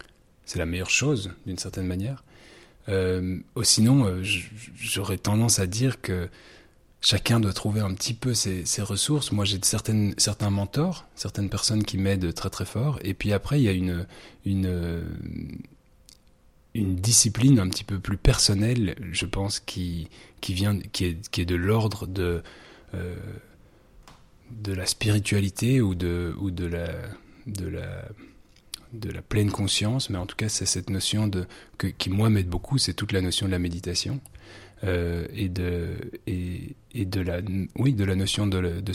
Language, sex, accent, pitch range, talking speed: French, male, French, 90-105 Hz, 175 wpm